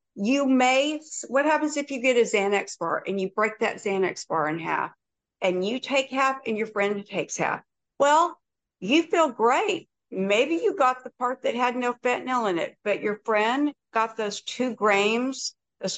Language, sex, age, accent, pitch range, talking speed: English, female, 60-79, American, 195-255 Hz, 190 wpm